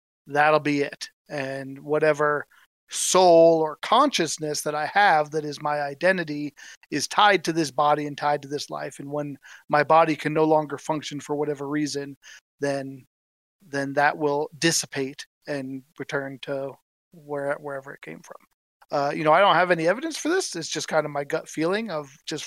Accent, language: American, English